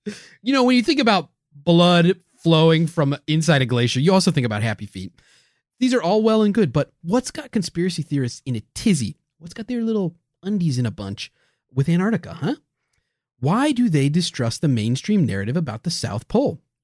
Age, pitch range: 30-49, 125-180 Hz